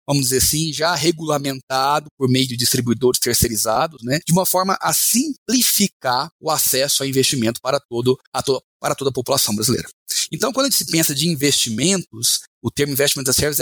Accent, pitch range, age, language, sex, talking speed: Brazilian, 130-175 Hz, 30-49, Portuguese, male, 185 wpm